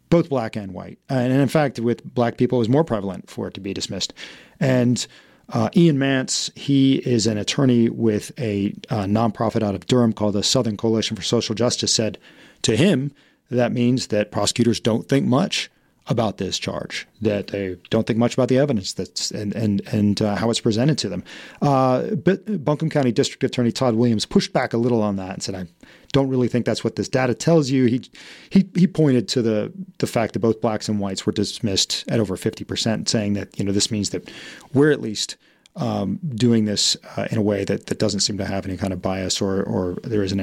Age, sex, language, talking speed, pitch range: 40-59, male, English, 220 wpm, 105-130 Hz